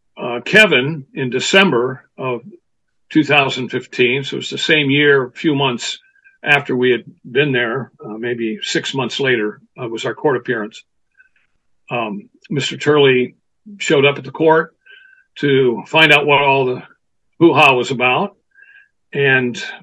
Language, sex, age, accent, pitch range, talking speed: English, male, 50-69, American, 130-185 Hz, 145 wpm